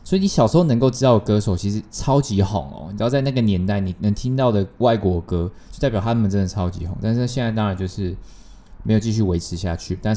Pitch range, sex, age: 95-125 Hz, male, 20-39